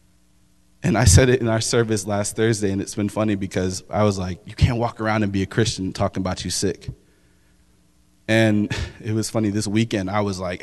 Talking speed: 215 wpm